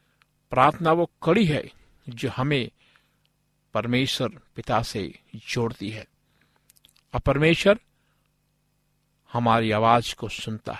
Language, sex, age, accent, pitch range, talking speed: Hindi, male, 50-69, native, 120-160 Hz, 95 wpm